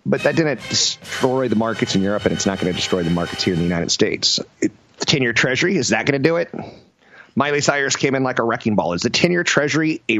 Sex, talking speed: male, 255 wpm